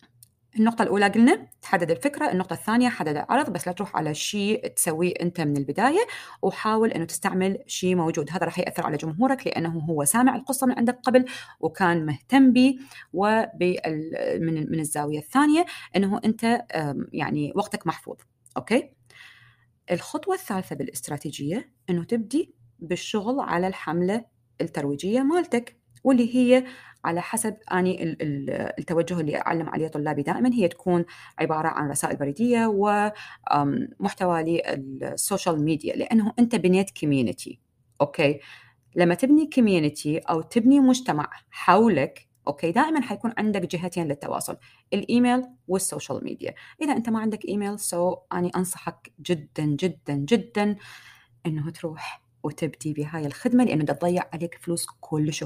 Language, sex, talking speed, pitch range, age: Arabic, female, 130 wpm, 150-225 Hz, 30-49